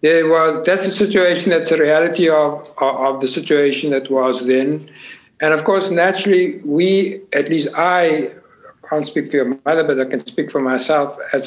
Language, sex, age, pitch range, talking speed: Dutch, male, 60-79, 145-180 Hz, 190 wpm